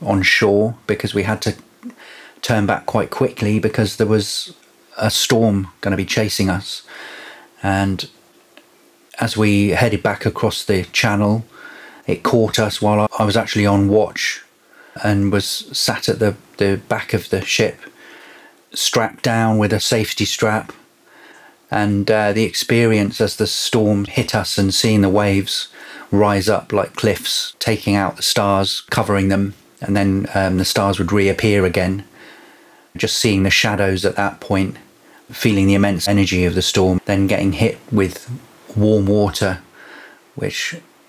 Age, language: 30-49, English